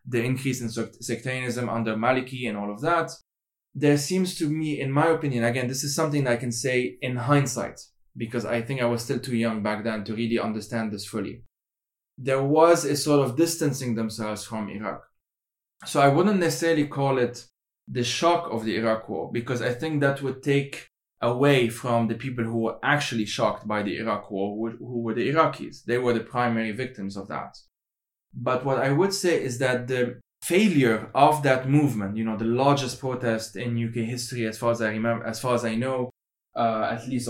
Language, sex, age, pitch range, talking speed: English, male, 20-39, 115-135 Hz, 200 wpm